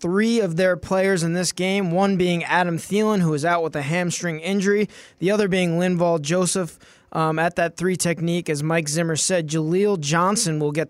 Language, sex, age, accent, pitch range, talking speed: English, male, 20-39, American, 155-185 Hz, 200 wpm